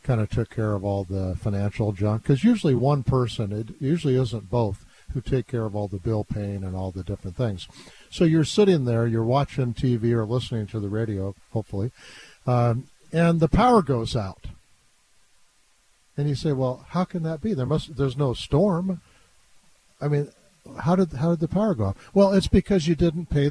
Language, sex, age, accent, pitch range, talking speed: English, male, 50-69, American, 125-180 Hz, 200 wpm